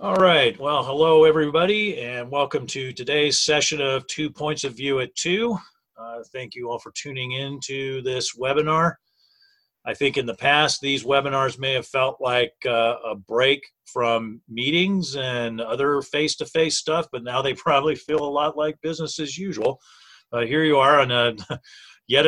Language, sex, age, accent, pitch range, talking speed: English, male, 40-59, American, 125-155 Hz, 170 wpm